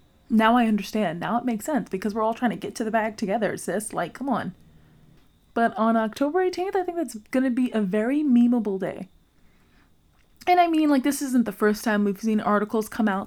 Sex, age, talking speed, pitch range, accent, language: female, 20-39, 220 wpm, 200-260 Hz, American, English